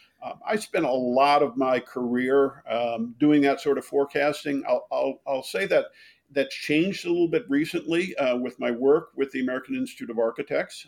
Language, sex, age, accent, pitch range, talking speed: English, male, 50-69, American, 115-150 Hz, 180 wpm